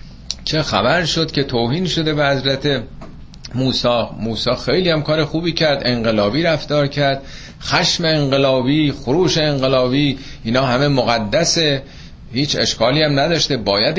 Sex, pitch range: male, 115-150 Hz